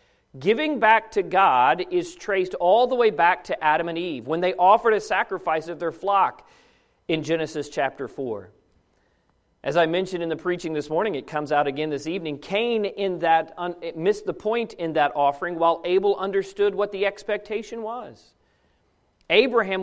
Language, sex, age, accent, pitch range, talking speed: English, male, 40-59, American, 160-225 Hz, 170 wpm